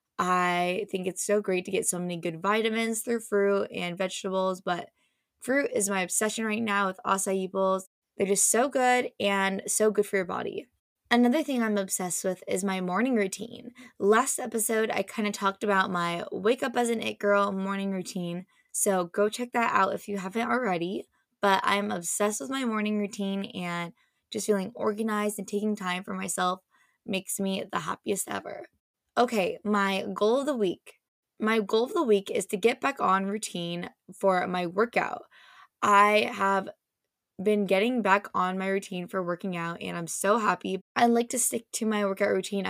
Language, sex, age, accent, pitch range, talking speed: English, female, 20-39, American, 190-220 Hz, 185 wpm